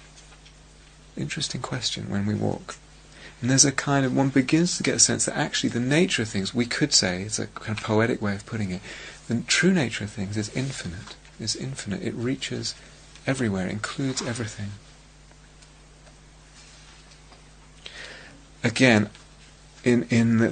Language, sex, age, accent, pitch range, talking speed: English, male, 30-49, British, 100-125 Hz, 155 wpm